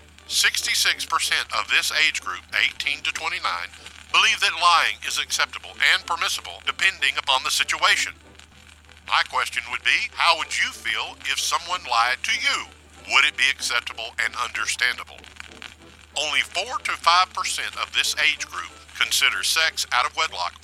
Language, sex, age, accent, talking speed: English, male, 50-69, American, 155 wpm